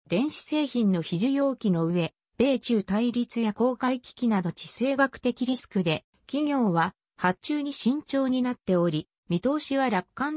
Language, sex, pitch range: Japanese, female, 175-265 Hz